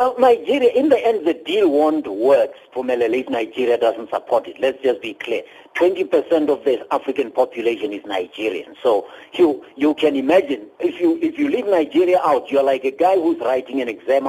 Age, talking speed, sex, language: 60-79, 195 wpm, male, English